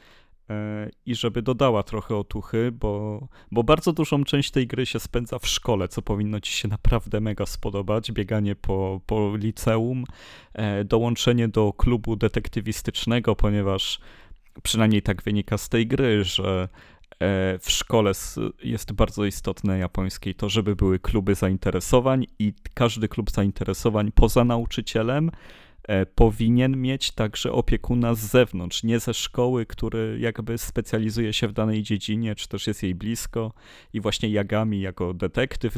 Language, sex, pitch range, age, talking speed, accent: Polish, male, 105-120 Hz, 30-49, 140 wpm, native